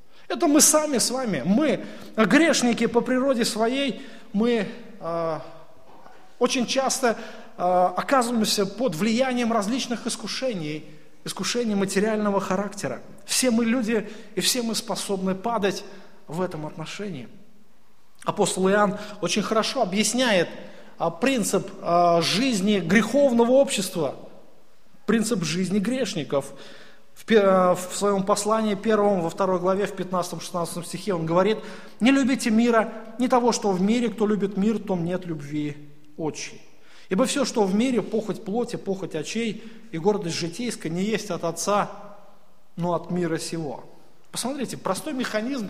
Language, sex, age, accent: Russian, male, 30-49, native